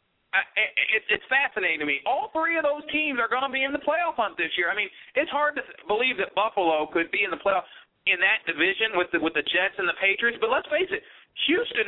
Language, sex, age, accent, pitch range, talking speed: English, male, 40-59, American, 180-290 Hz, 255 wpm